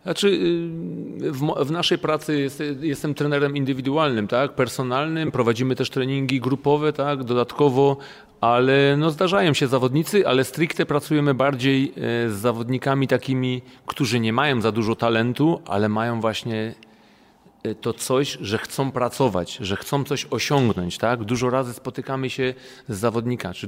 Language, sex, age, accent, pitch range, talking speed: Polish, male, 40-59, native, 115-135 Hz, 140 wpm